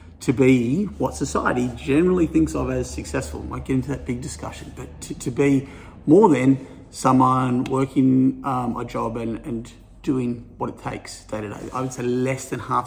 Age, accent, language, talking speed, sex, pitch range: 30-49, Australian, English, 190 wpm, male, 115-140 Hz